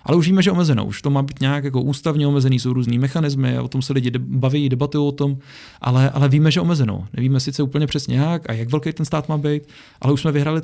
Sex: male